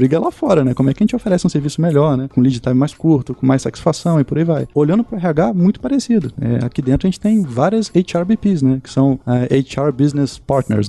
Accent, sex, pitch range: Brazilian, male, 135-205 Hz